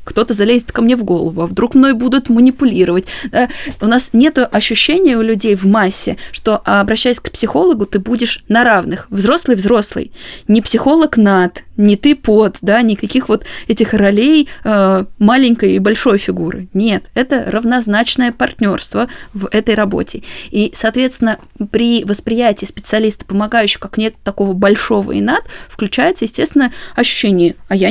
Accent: native